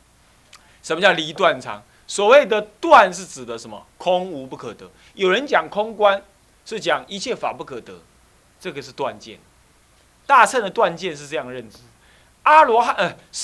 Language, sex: Chinese, male